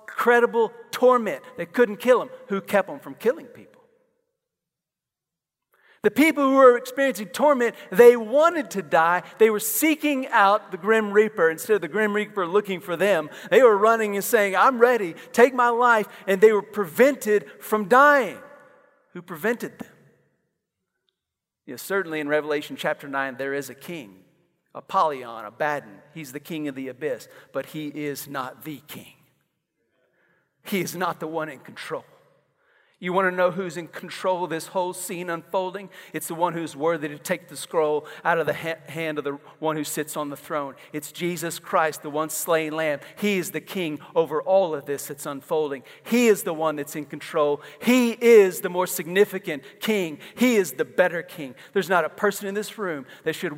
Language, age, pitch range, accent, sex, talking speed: English, 40-59, 155-225 Hz, American, male, 185 wpm